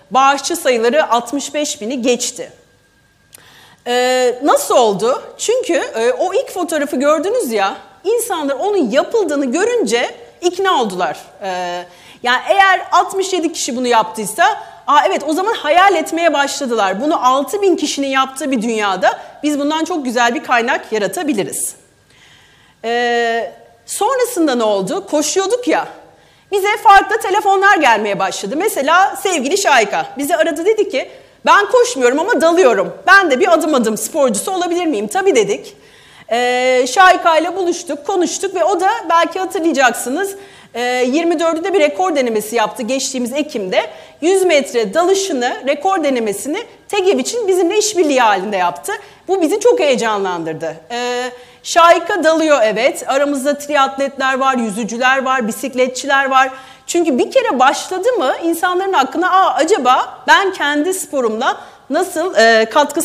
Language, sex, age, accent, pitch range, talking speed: Turkish, female, 40-59, native, 250-370 Hz, 130 wpm